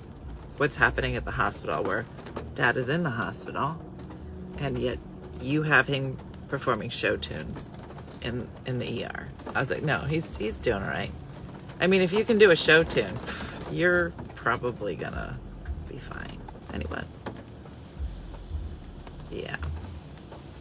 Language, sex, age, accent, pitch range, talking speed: English, female, 40-59, American, 115-175 Hz, 140 wpm